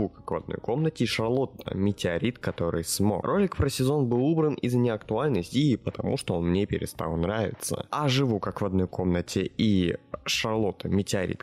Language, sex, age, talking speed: Russian, male, 20-39, 170 wpm